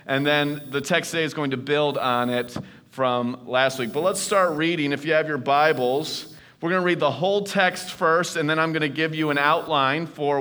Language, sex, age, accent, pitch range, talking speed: English, male, 30-49, American, 130-175 Hz, 235 wpm